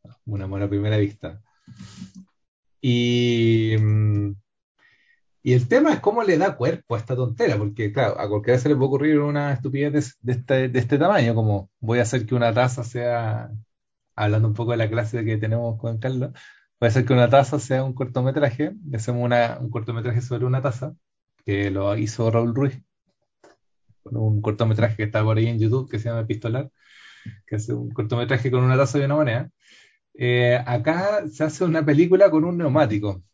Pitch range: 110-150 Hz